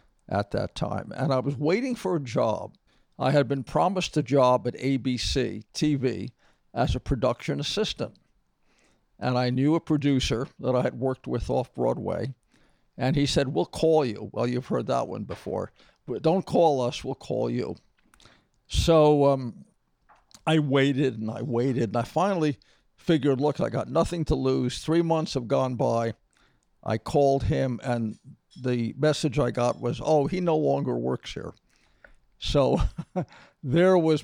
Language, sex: English, male